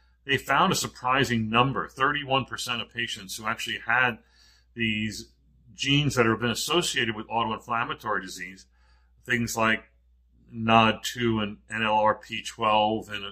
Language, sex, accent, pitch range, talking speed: English, male, American, 105-120 Hz, 115 wpm